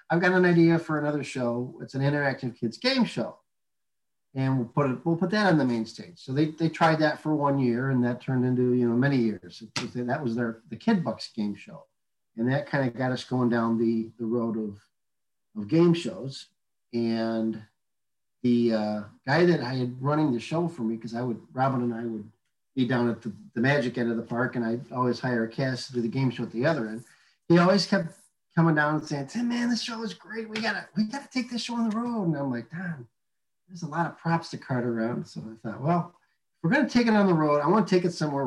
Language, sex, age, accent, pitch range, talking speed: English, male, 40-59, American, 115-155 Hz, 250 wpm